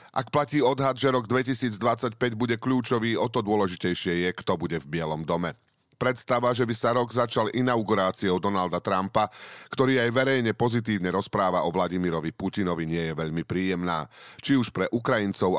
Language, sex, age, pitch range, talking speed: Slovak, male, 40-59, 90-120 Hz, 160 wpm